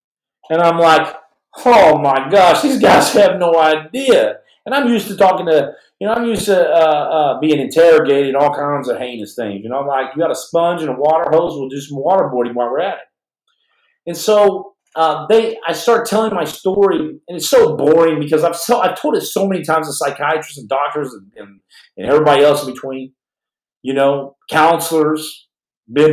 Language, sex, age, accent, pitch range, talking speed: English, male, 40-59, American, 130-170 Hz, 205 wpm